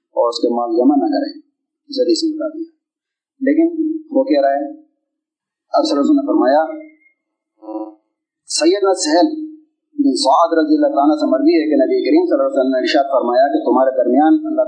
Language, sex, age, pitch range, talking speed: Urdu, male, 30-49, 275-325 Hz, 50 wpm